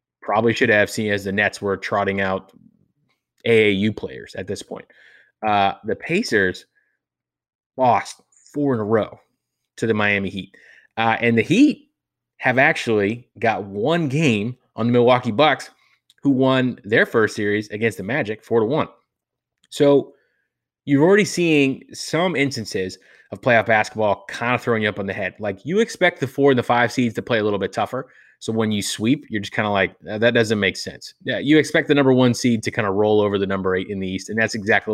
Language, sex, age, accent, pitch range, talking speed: English, male, 20-39, American, 105-135 Hz, 200 wpm